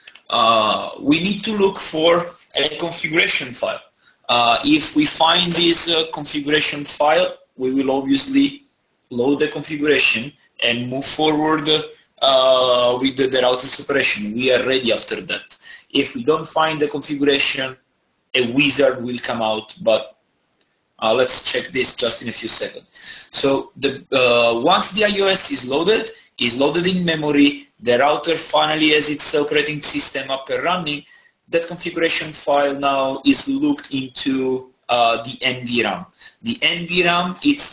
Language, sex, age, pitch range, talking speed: English, male, 30-49, 135-180 Hz, 145 wpm